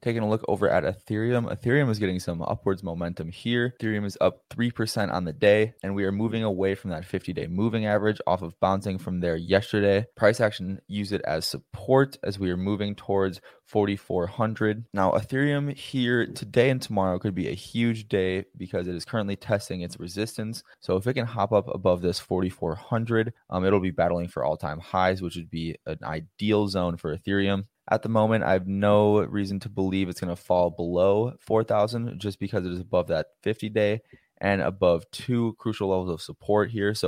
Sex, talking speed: male, 195 wpm